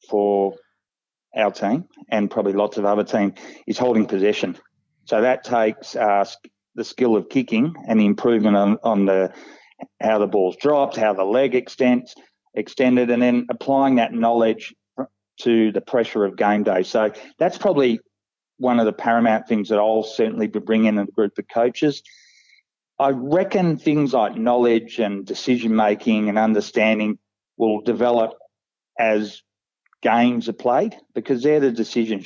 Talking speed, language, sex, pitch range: 155 wpm, English, male, 100-125 Hz